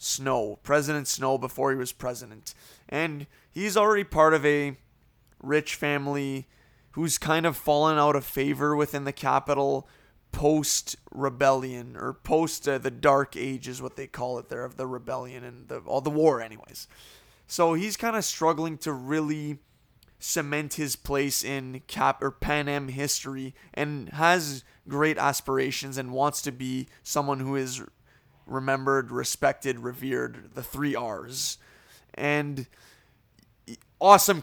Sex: male